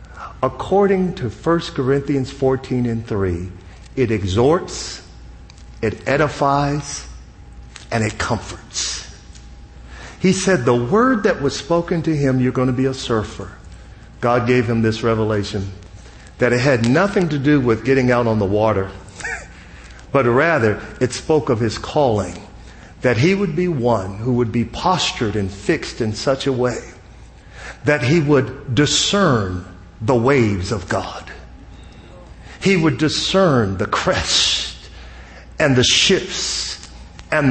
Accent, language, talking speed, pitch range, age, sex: American, English, 135 wpm, 95-140 Hz, 50-69, male